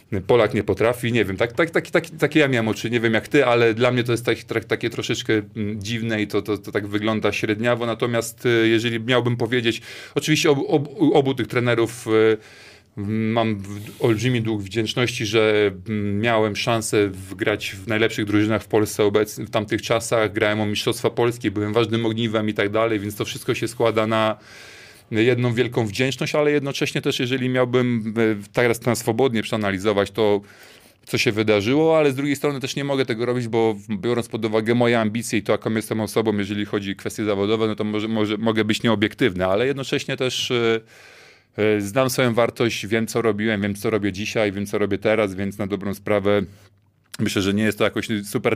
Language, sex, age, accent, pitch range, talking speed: Polish, male, 30-49, native, 105-120 Hz, 190 wpm